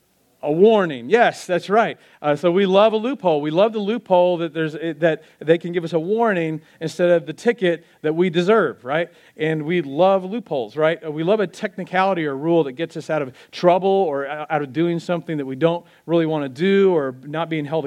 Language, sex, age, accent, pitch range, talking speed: English, male, 40-59, American, 140-170 Hz, 220 wpm